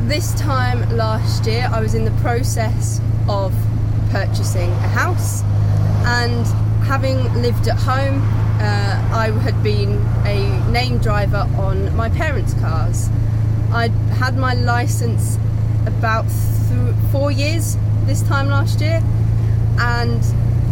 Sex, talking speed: female, 120 wpm